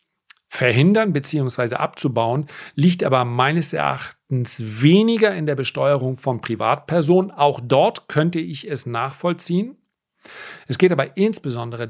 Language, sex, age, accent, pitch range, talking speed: German, male, 40-59, German, 125-155 Hz, 115 wpm